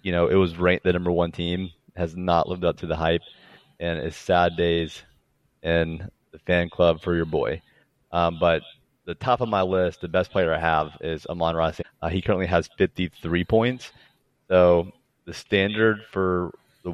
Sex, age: male, 30-49